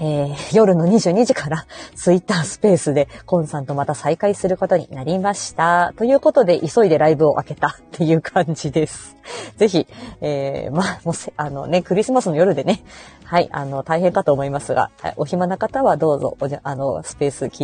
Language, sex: Japanese, female